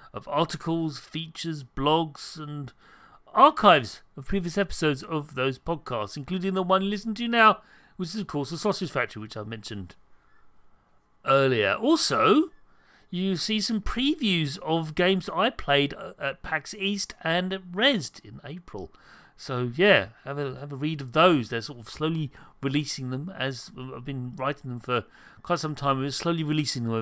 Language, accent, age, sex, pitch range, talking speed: English, British, 40-59, male, 135-190 Hz, 165 wpm